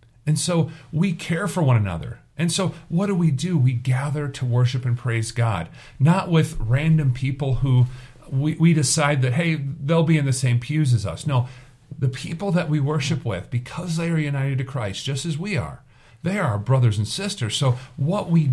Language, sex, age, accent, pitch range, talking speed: English, male, 50-69, American, 125-160 Hz, 205 wpm